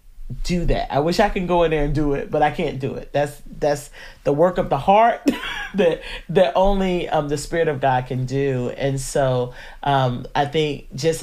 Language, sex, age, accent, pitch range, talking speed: English, male, 40-59, American, 125-160 Hz, 215 wpm